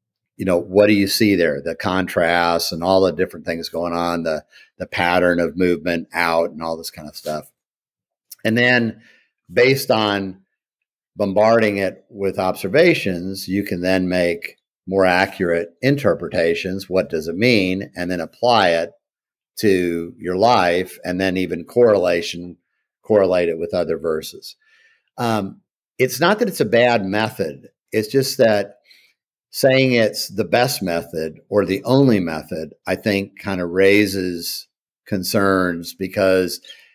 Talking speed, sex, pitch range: 145 wpm, male, 90-110 Hz